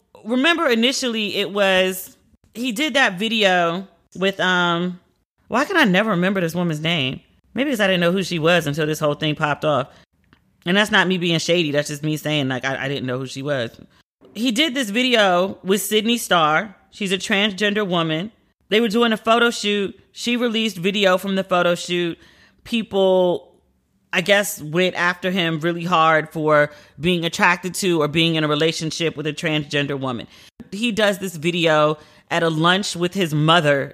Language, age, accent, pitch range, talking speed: English, 30-49, American, 155-200 Hz, 185 wpm